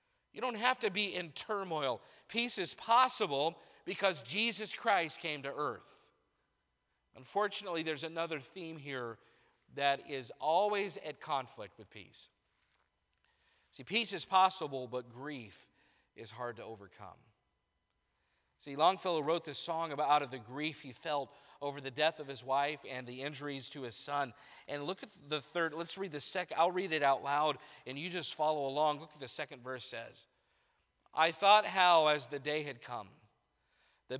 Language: English